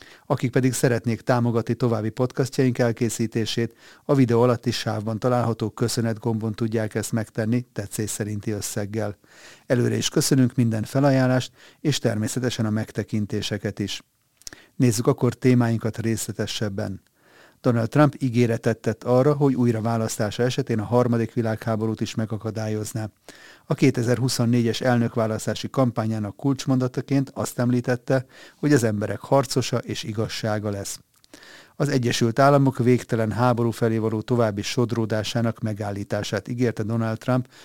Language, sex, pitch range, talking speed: Hungarian, male, 110-130 Hz, 120 wpm